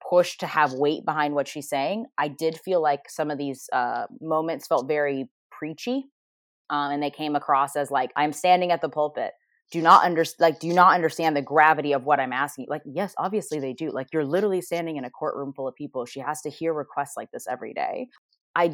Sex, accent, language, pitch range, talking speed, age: female, American, English, 140-165 Hz, 225 wpm, 20-39